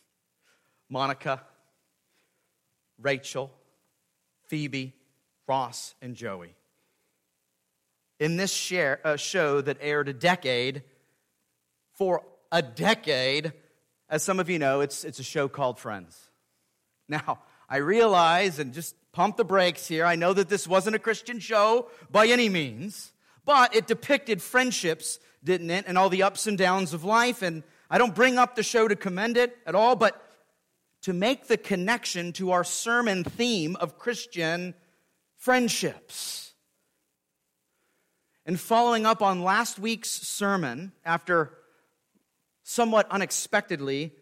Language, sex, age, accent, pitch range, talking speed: English, male, 40-59, American, 140-200 Hz, 130 wpm